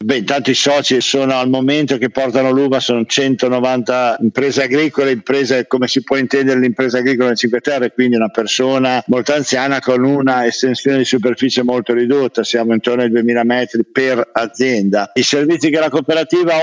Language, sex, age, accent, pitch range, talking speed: Italian, male, 50-69, native, 125-145 Hz, 175 wpm